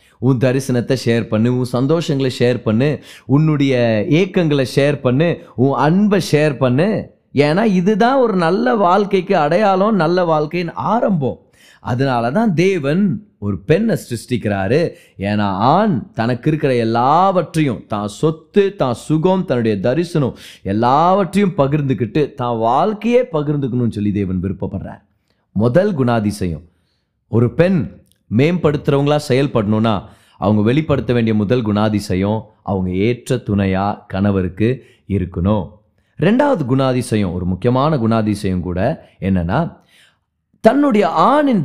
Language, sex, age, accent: Tamil, male, 30-49, native